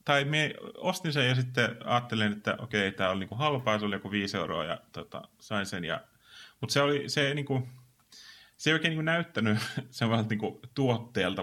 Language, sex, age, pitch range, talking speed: Finnish, male, 30-49, 100-125 Hz, 175 wpm